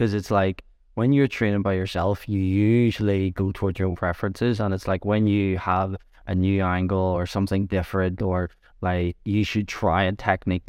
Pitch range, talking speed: 95-110 Hz, 190 wpm